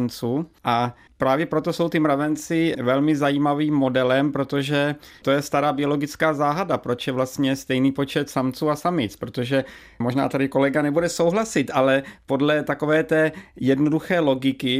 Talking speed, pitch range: 140 wpm, 130-150 Hz